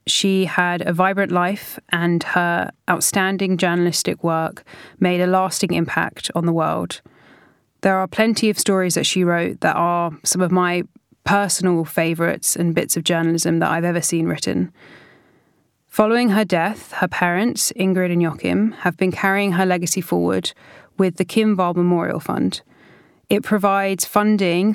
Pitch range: 170-195 Hz